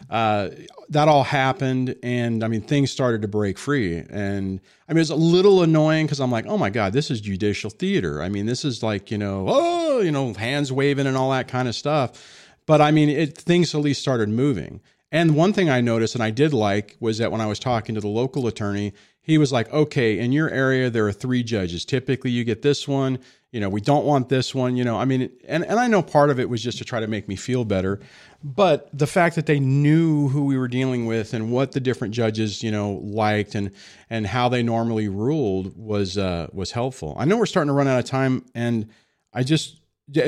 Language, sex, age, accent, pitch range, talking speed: English, male, 40-59, American, 110-145 Hz, 240 wpm